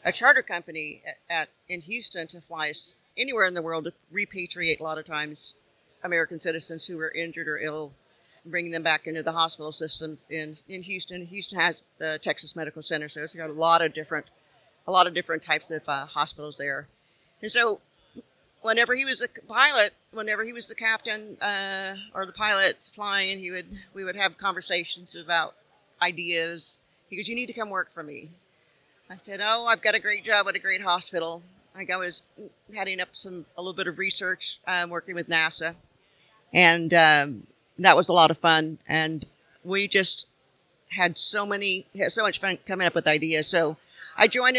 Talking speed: 195 wpm